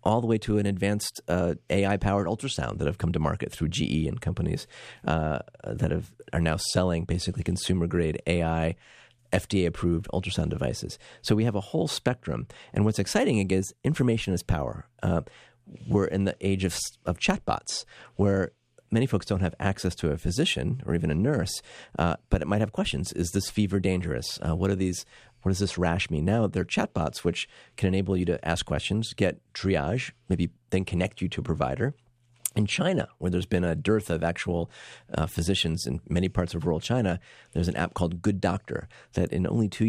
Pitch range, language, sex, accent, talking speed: 85-105 Hz, English, male, American, 195 wpm